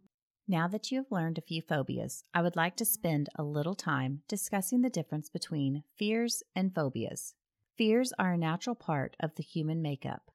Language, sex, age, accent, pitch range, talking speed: English, female, 30-49, American, 160-215 Hz, 185 wpm